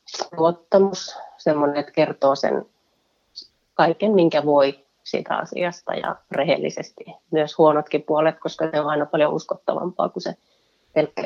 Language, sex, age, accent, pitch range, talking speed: Finnish, female, 30-49, native, 150-170 Hz, 125 wpm